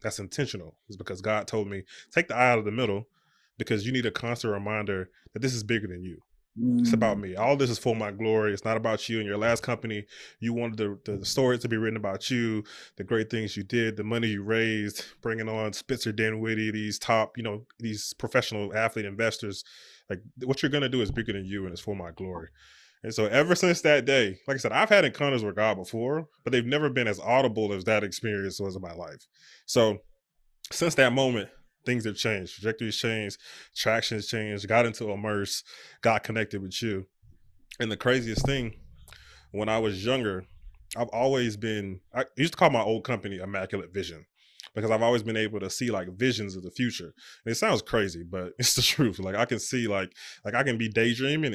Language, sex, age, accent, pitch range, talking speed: English, male, 20-39, American, 100-125 Hz, 215 wpm